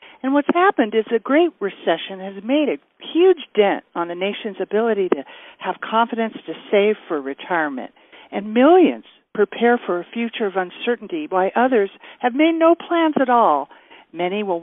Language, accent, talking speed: English, American, 170 wpm